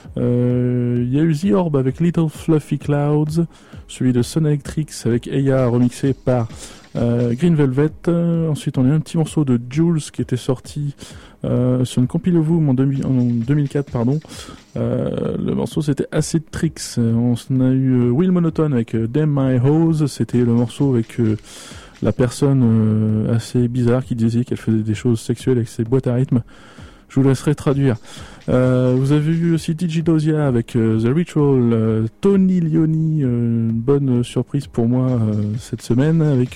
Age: 20-39